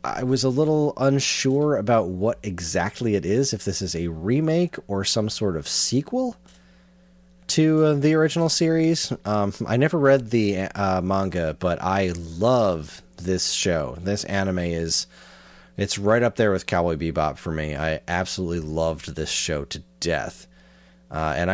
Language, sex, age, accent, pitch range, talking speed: English, male, 30-49, American, 80-115 Hz, 160 wpm